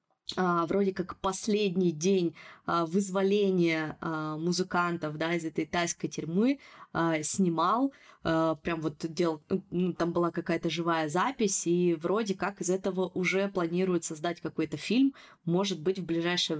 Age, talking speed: 20-39, 125 wpm